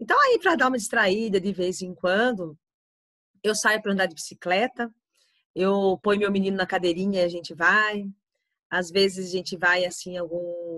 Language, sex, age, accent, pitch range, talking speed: Portuguese, female, 30-49, Brazilian, 180-215 Hz, 190 wpm